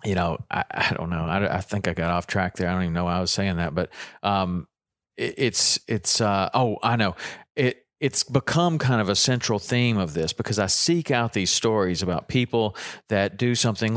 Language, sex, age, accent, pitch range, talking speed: English, male, 40-59, American, 100-135 Hz, 230 wpm